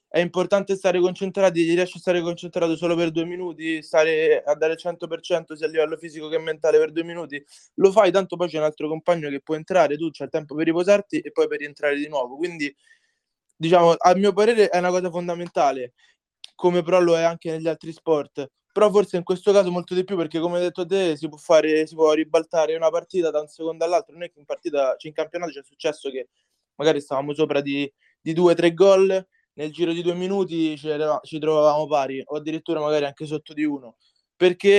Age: 20-39